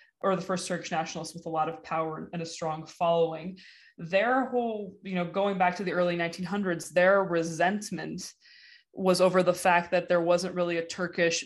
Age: 20-39